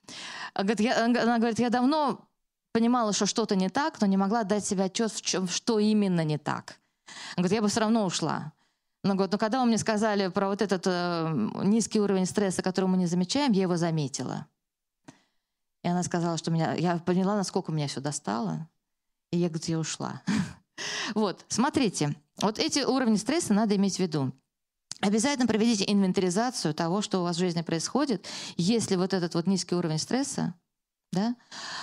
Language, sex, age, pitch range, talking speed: Russian, female, 20-39, 175-220 Hz, 175 wpm